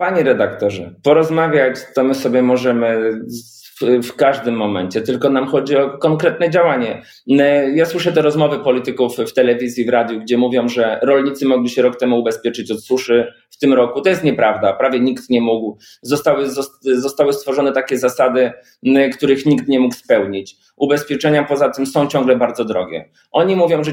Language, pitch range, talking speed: Polish, 125-150 Hz, 165 wpm